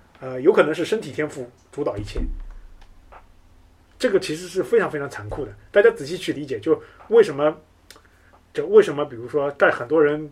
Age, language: 30-49, Chinese